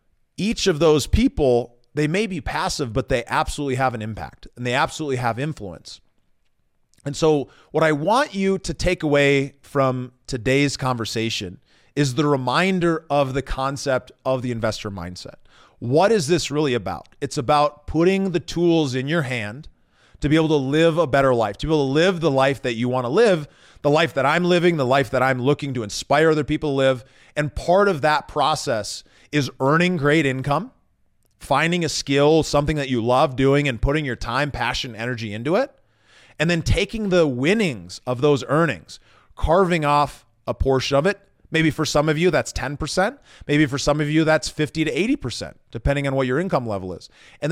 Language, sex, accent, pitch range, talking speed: English, male, American, 130-160 Hz, 195 wpm